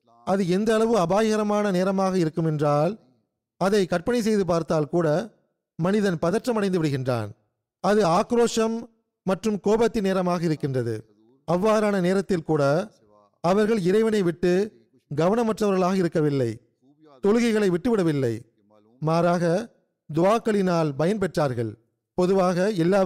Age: 40-59